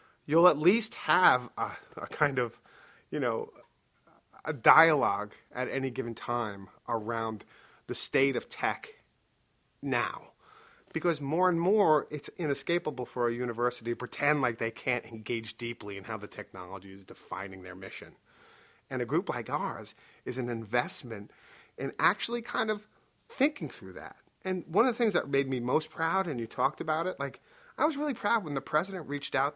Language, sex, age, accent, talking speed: English, male, 30-49, American, 175 wpm